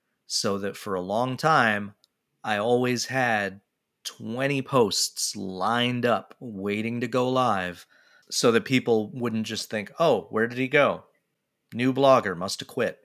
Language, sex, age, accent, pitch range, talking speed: English, male, 30-49, American, 95-115 Hz, 150 wpm